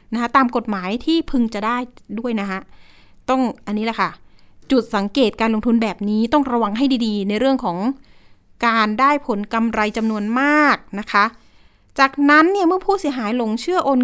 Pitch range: 210-270 Hz